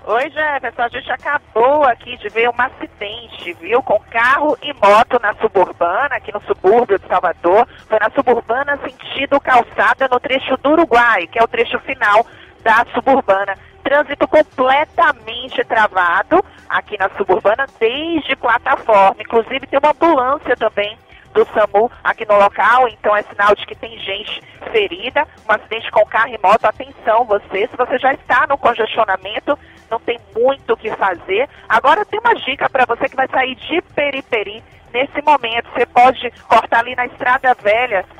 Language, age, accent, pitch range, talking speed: Portuguese, 40-59, Brazilian, 220-285 Hz, 165 wpm